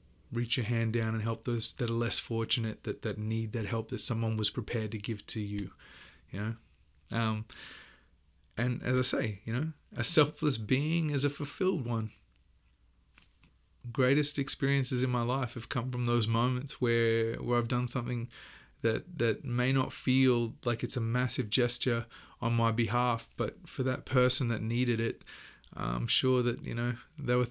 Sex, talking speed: male, 180 wpm